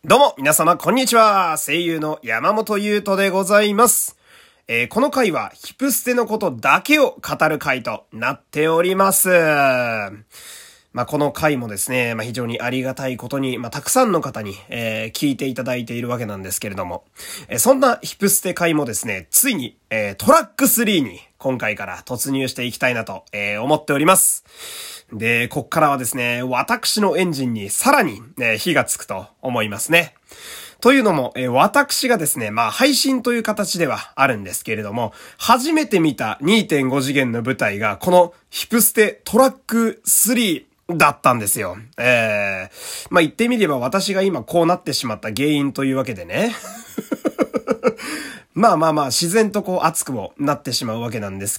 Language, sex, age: Japanese, male, 30-49